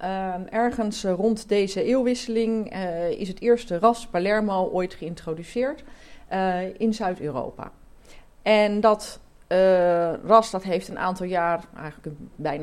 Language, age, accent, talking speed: Dutch, 40-59, Dutch, 130 wpm